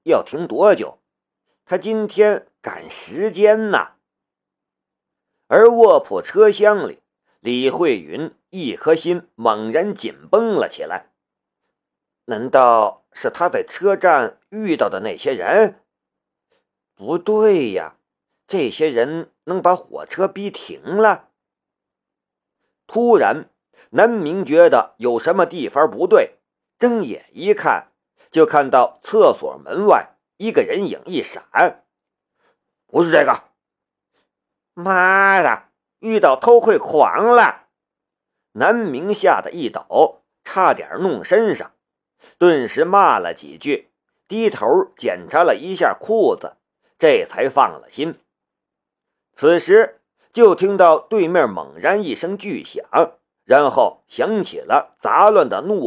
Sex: male